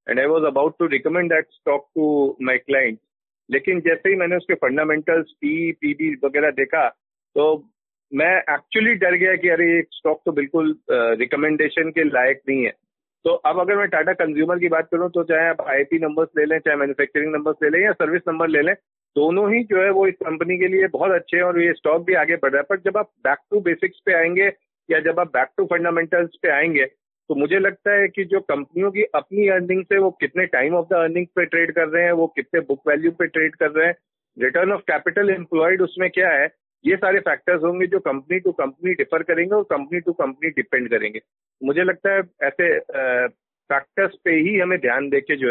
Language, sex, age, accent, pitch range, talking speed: Hindi, male, 40-59, native, 155-190 Hz, 220 wpm